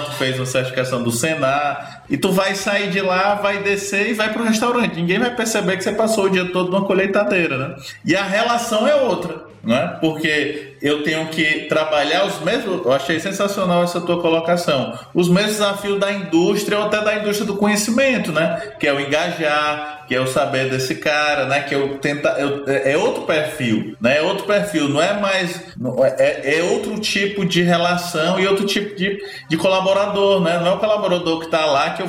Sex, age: male, 20-39